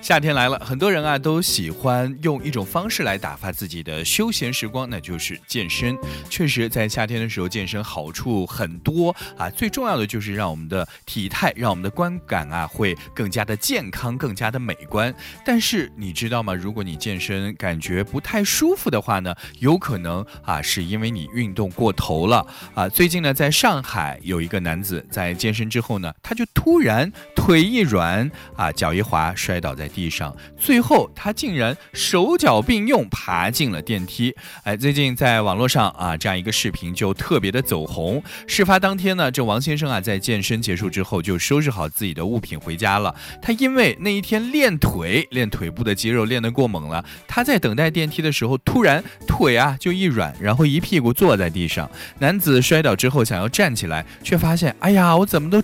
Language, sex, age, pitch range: Chinese, male, 20-39, 95-155 Hz